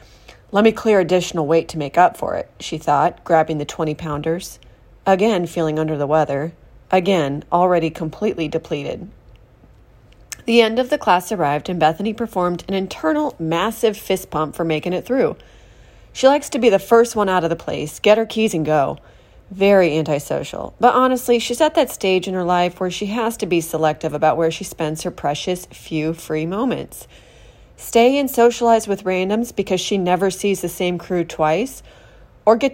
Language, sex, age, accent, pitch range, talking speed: English, female, 30-49, American, 160-220 Hz, 180 wpm